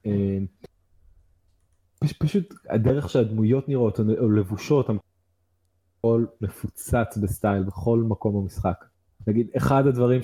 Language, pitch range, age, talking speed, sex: Hebrew, 100-125 Hz, 20-39, 90 wpm, male